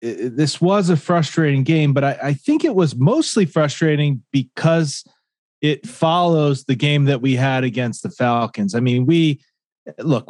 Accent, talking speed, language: American, 165 wpm, English